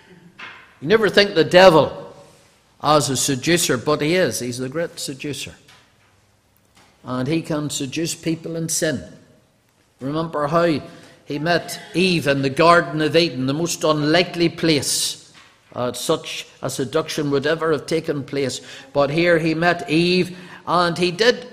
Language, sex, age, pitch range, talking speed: English, male, 50-69, 140-195 Hz, 150 wpm